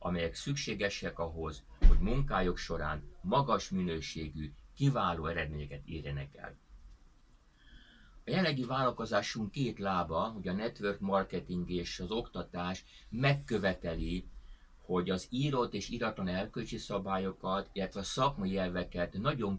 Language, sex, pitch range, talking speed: Hungarian, male, 85-105 Hz, 110 wpm